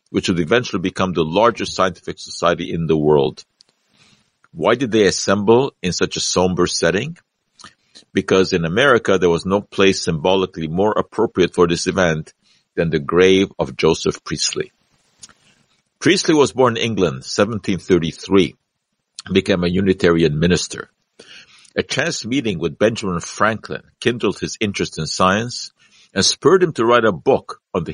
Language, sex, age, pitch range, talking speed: English, male, 50-69, 90-110 Hz, 150 wpm